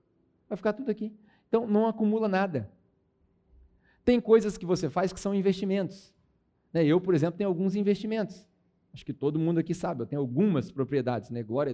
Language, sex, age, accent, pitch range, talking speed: Portuguese, male, 40-59, Brazilian, 145-195 Hz, 175 wpm